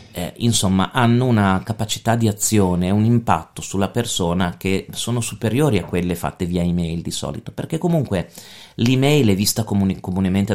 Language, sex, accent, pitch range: Italian, male, native, 90-110 Hz